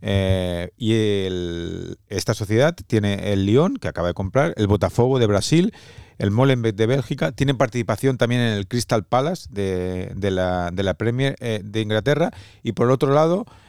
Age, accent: 40-59, Spanish